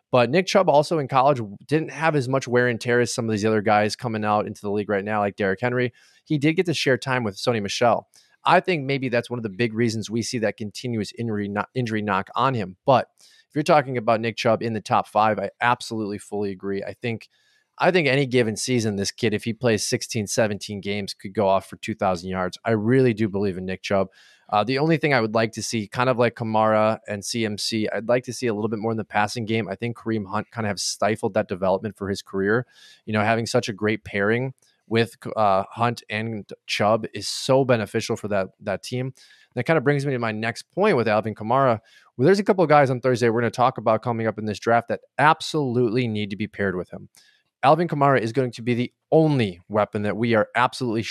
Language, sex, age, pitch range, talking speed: English, male, 20-39, 105-125 Hz, 245 wpm